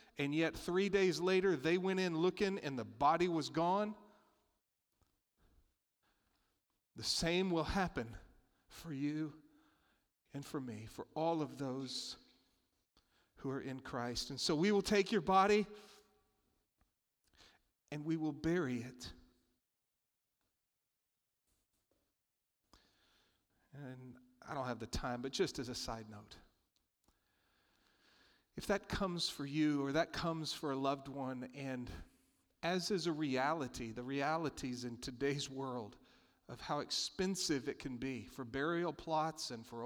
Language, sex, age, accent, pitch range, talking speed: English, male, 40-59, American, 130-170 Hz, 130 wpm